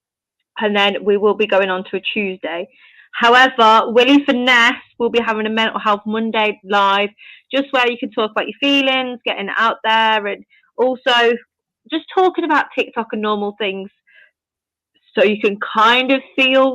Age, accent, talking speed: 20-39, British, 170 wpm